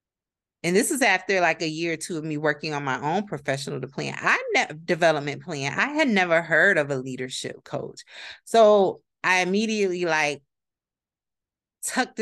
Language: English